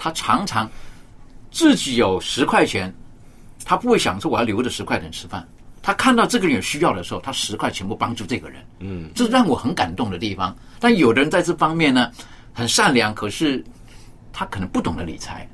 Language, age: Chinese, 50-69